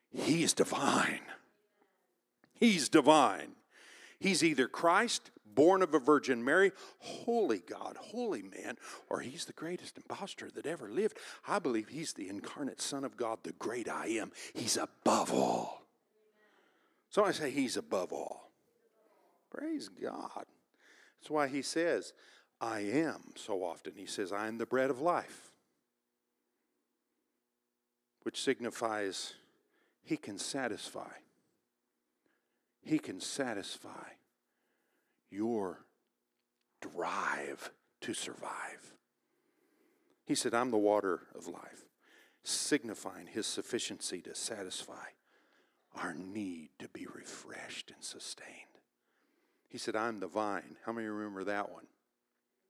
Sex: male